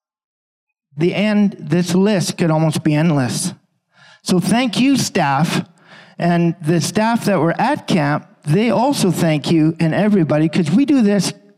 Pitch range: 160-195 Hz